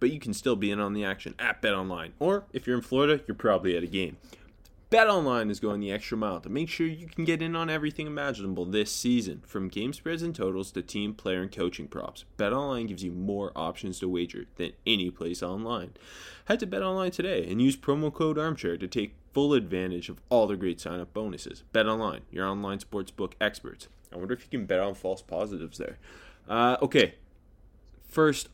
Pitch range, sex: 90-120 Hz, male